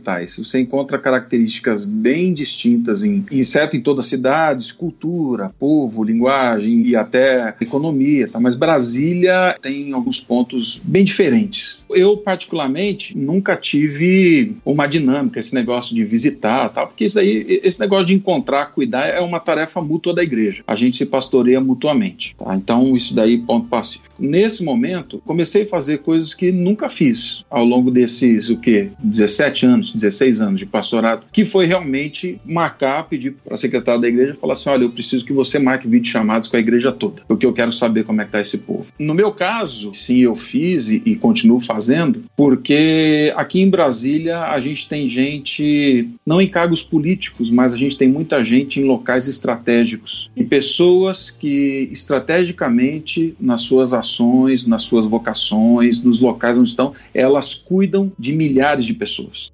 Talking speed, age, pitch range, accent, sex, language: 165 wpm, 40-59, 125-185 Hz, Brazilian, male, Portuguese